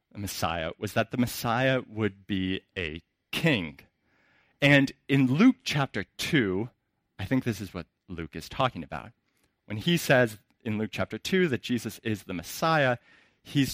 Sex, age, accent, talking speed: male, 30-49, American, 155 wpm